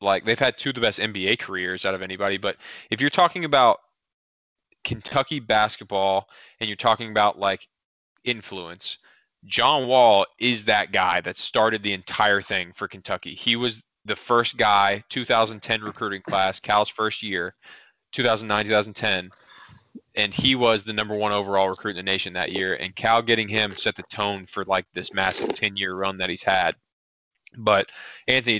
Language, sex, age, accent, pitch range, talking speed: English, male, 20-39, American, 95-110 Hz, 170 wpm